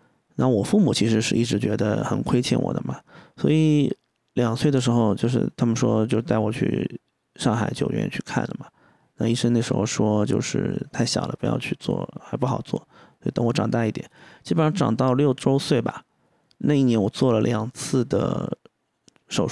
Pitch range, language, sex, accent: 115-140 Hz, Chinese, male, native